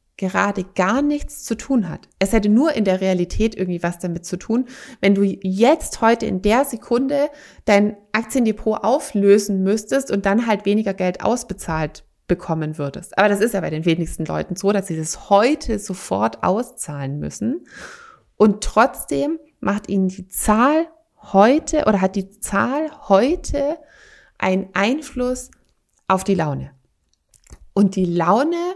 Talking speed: 150 wpm